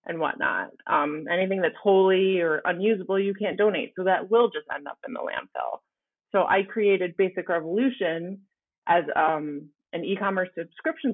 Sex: female